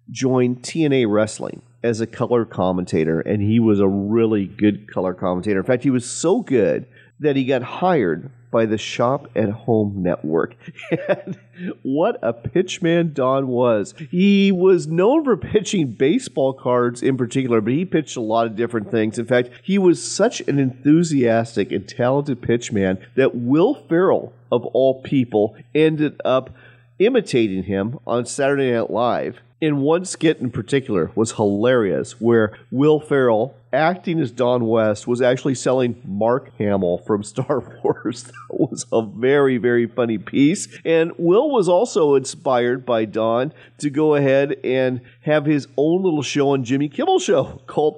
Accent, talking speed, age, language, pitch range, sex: American, 160 wpm, 40-59, English, 115-145 Hz, male